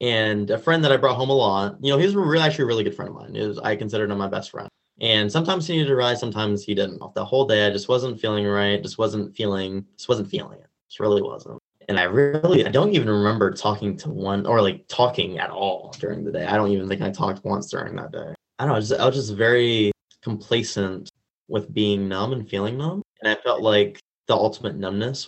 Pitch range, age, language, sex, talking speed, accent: 100-120 Hz, 20-39, English, male, 245 wpm, American